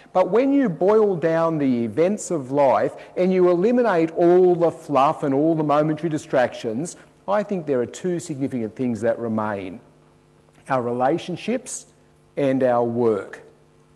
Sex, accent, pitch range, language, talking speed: male, Australian, 115-160 Hz, English, 145 wpm